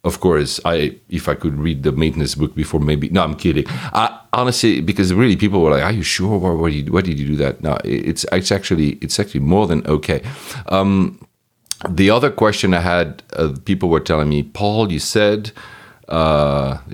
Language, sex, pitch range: English, male, 80-100 Hz